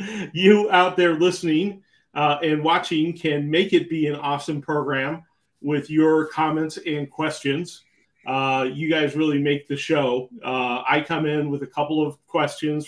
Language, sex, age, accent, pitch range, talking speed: English, male, 40-59, American, 135-160 Hz, 165 wpm